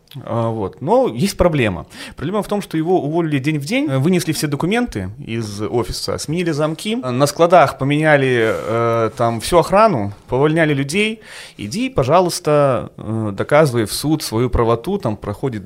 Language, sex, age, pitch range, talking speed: Russian, male, 30-49, 110-145 Hz, 140 wpm